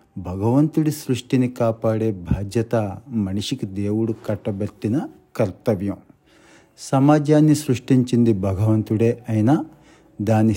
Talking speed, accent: 75 wpm, native